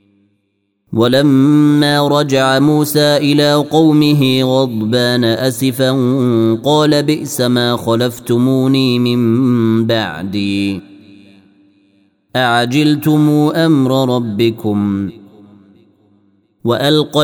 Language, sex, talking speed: Arabic, male, 60 wpm